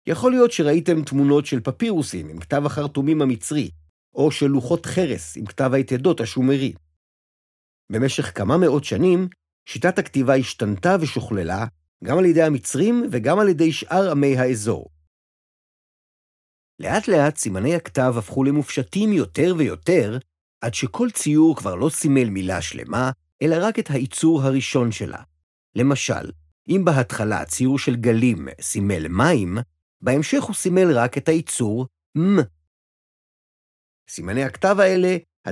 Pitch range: 100-155 Hz